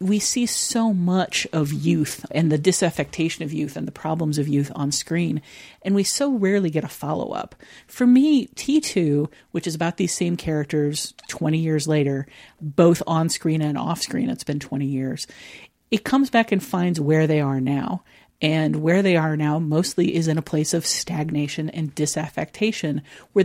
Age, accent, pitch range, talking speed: 40-59, American, 150-190 Hz, 175 wpm